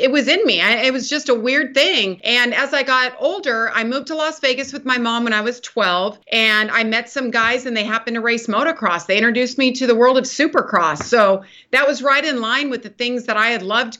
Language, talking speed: English, 255 wpm